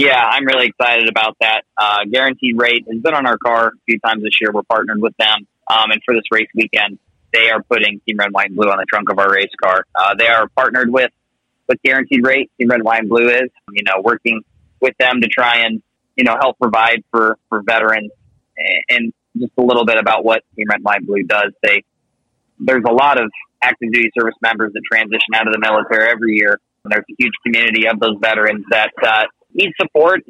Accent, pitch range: American, 110-125 Hz